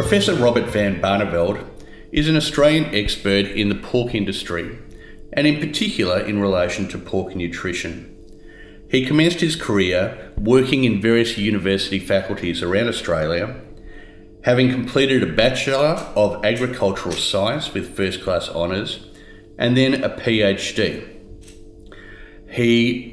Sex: male